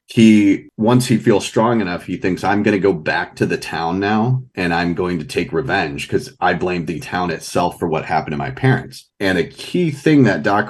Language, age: English, 30-49